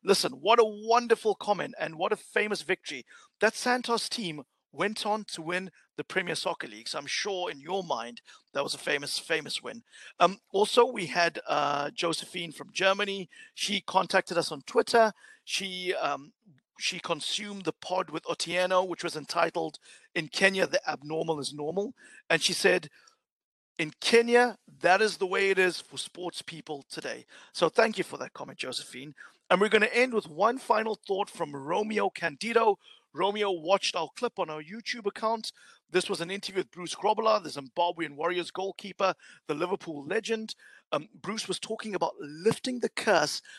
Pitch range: 165-215 Hz